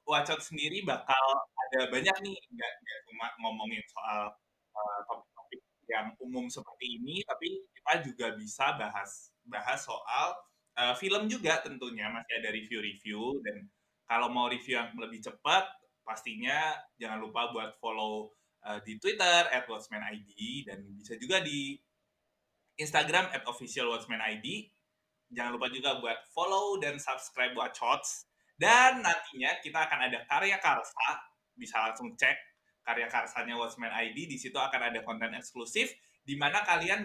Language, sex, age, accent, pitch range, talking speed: Indonesian, male, 20-39, native, 115-185 Hz, 130 wpm